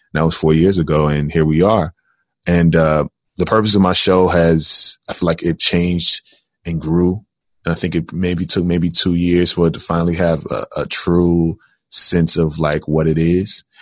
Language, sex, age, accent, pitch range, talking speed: English, male, 20-39, American, 80-90 Hz, 205 wpm